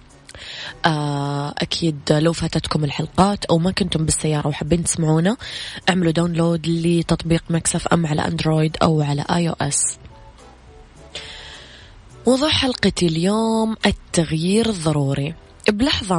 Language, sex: Arabic, female